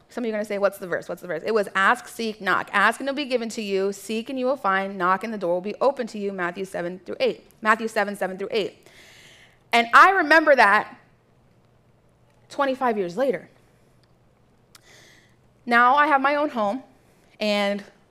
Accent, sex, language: American, female, English